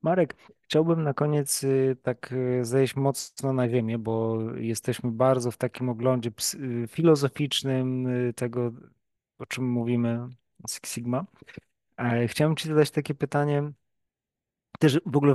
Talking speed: 115 wpm